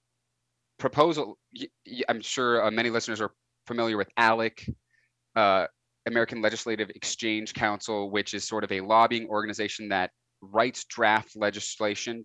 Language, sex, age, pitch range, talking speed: English, male, 30-49, 100-115 Hz, 120 wpm